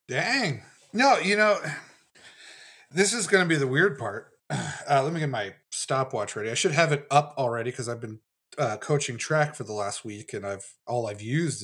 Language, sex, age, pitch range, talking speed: English, male, 30-49, 120-165 Hz, 205 wpm